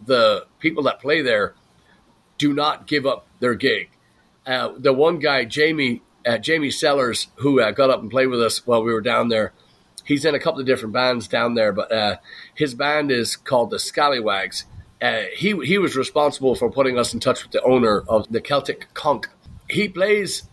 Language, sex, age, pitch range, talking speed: English, male, 40-59, 120-160 Hz, 200 wpm